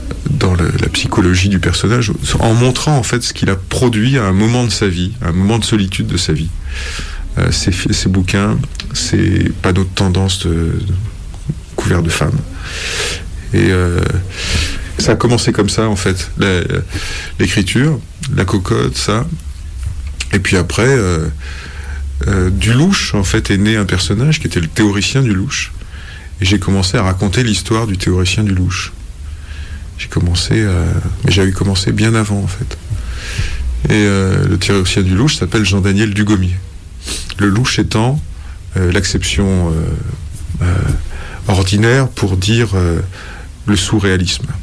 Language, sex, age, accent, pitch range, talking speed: French, male, 30-49, French, 85-105 Hz, 155 wpm